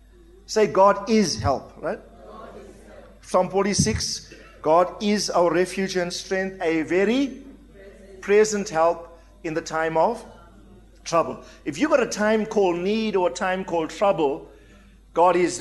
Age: 50-69